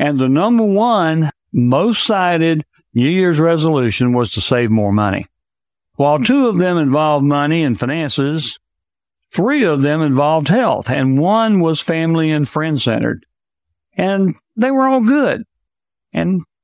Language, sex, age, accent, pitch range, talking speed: English, male, 60-79, American, 130-180 Hz, 140 wpm